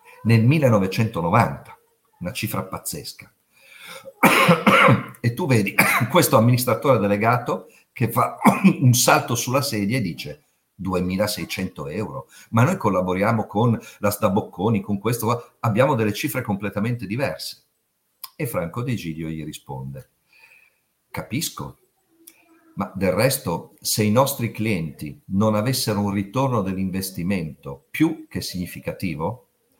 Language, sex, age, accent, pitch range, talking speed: Italian, male, 50-69, native, 100-135 Hz, 115 wpm